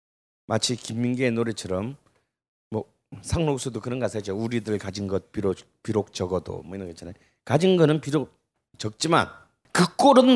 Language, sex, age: Korean, male, 40-59